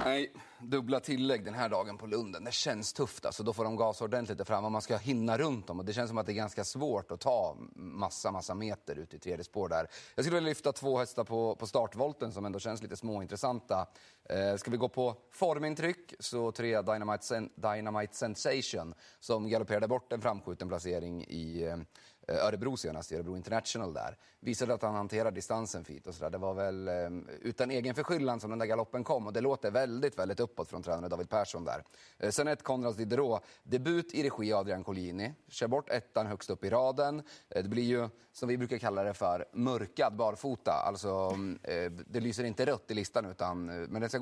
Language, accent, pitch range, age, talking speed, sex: Swedish, native, 95-125 Hz, 30-49, 205 wpm, male